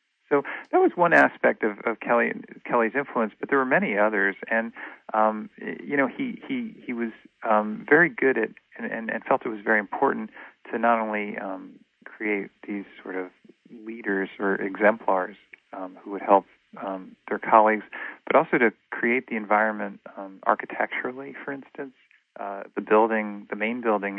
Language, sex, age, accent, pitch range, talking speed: English, male, 40-59, American, 100-115 Hz, 170 wpm